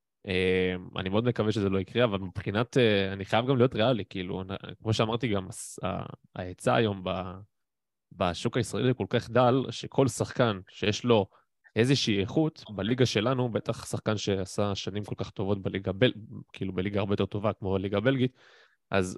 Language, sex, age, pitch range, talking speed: Hebrew, male, 20-39, 95-120 Hz, 160 wpm